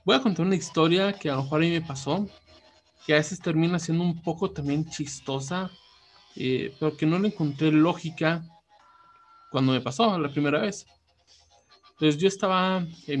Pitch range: 145-195 Hz